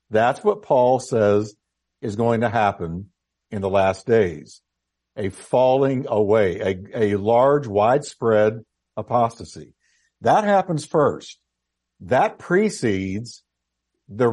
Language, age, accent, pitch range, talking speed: English, 50-69, American, 95-130 Hz, 110 wpm